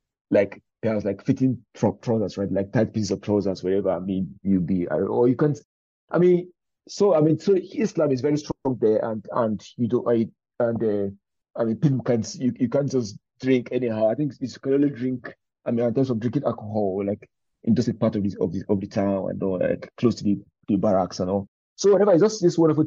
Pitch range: 105-130 Hz